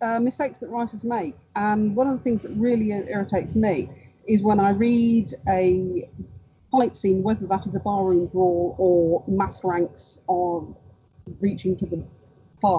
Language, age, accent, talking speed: English, 40-59, British, 165 wpm